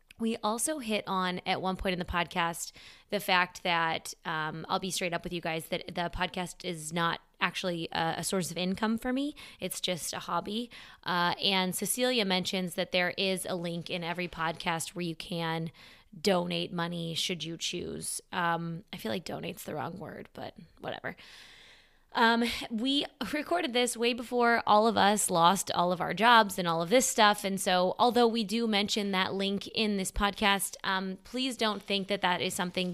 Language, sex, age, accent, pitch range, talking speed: English, female, 20-39, American, 175-210 Hz, 195 wpm